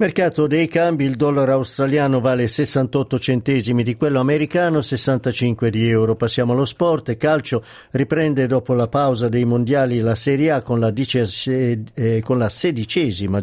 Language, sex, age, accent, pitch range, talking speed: Italian, male, 50-69, native, 115-140 Hz, 160 wpm